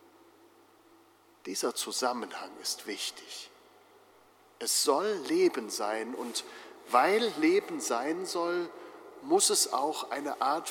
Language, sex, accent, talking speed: German, male, German, 100 wpm